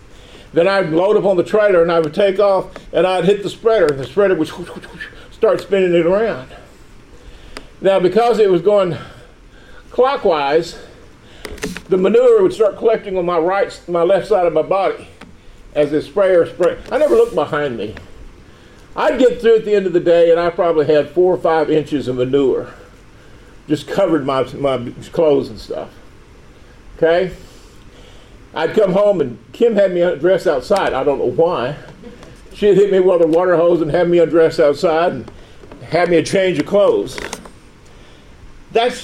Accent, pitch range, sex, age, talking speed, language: American, 155-205 Hz, male, 50-69, 175 wpm, English